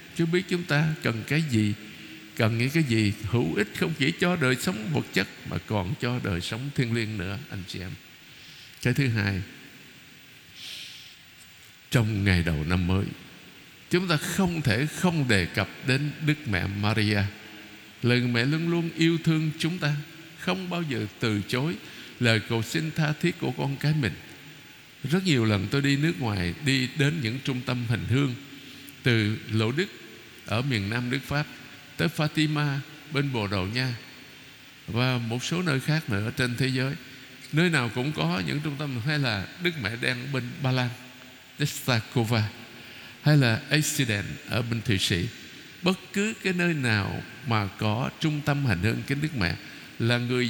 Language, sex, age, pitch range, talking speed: Vietnamese, male, 60-79, 110-150 Hz, 175 wpm